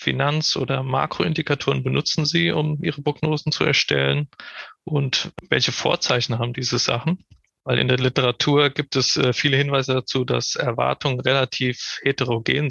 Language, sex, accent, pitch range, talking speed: German, male, German, 125-145 Hz, 135 wpm